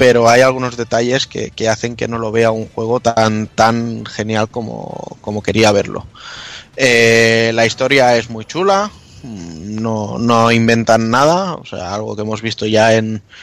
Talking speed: 170 wpm